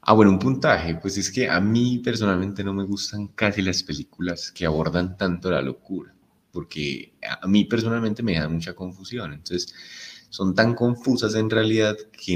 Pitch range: 80-100 Hz